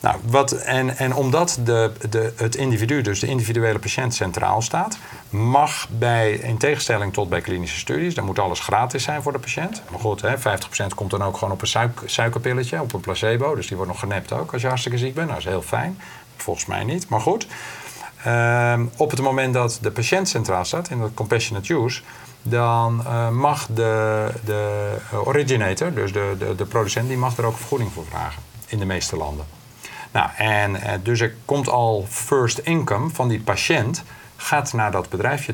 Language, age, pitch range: Dutch, 50-69, 100-130 Hz